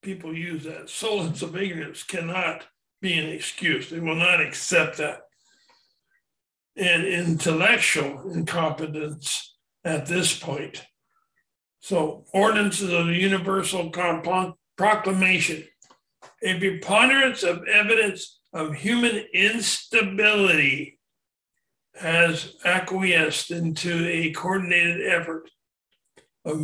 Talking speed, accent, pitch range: 90 wpm, American, 160-195 Hz